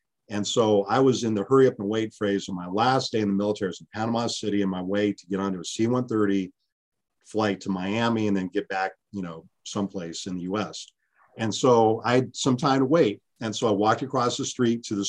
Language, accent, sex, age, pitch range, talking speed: English, American, male, 50-69, 100-125 Hz, 240 wpm